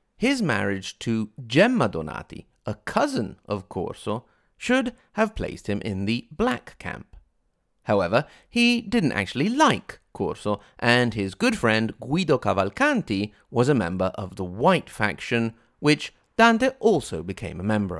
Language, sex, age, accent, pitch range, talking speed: English, male, 30-49, British, 100-150 Hz, 140 wpm